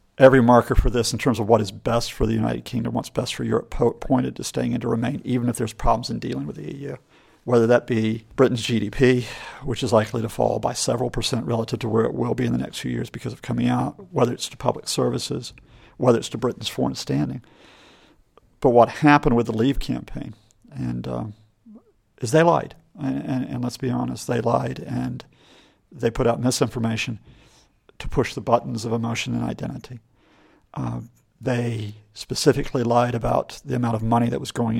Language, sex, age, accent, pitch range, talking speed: English, male, 50-69, American, 115-130 Hz, 205 wpm